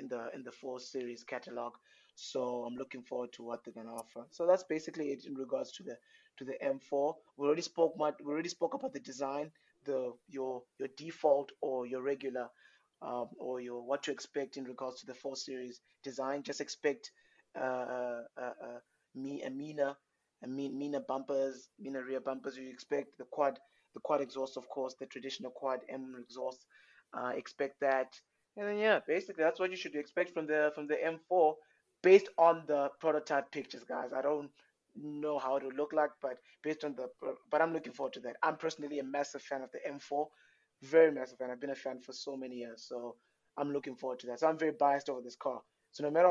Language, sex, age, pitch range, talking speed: English, male, 20-39, 130-155 Hz, 205 wpm